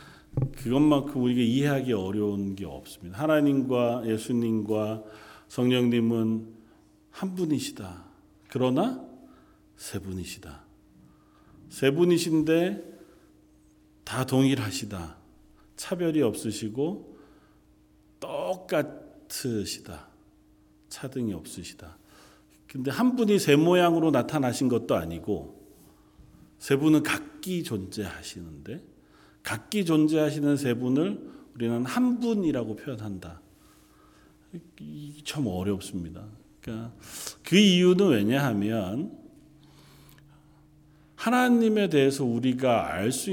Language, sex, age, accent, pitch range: Korean, male, 40-59, native, 105-155 Hz